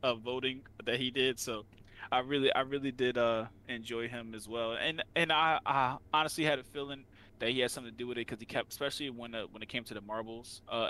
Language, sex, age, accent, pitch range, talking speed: English, male, 20-39, American, 110-130 Hz, 250 wpm